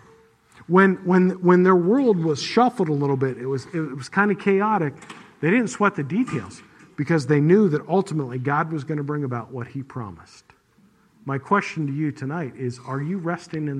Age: 50-69